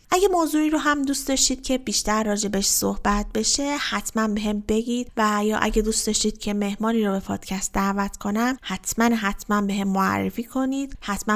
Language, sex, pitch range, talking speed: Persian, female, 195-240 Hz, 185 wpm